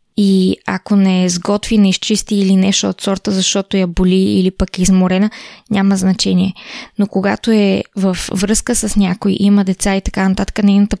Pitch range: 195-215 Hz